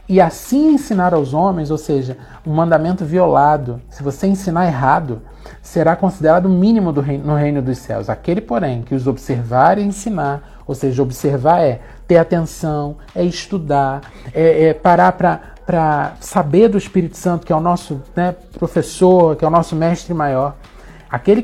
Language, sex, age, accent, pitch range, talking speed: Portuguese, male, 40-59, Brazilian, 140-175 Hz, 170 wpm